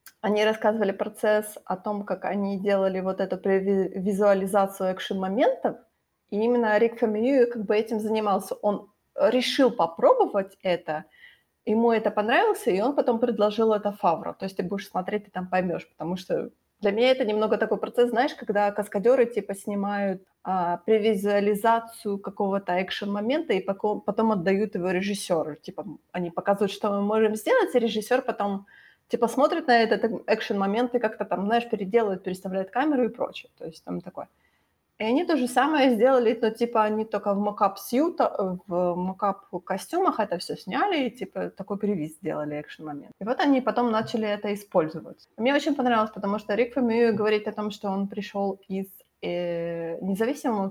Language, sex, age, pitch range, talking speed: Ukrainian, female, 20-39, 195-230 Hz, 160 wpm